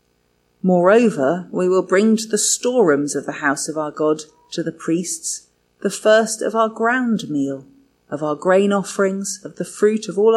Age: 40-59